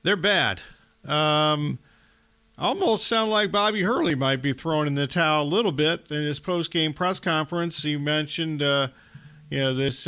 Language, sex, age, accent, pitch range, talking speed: English, male, 40-59, American, 150-190 Hz, 165 wpm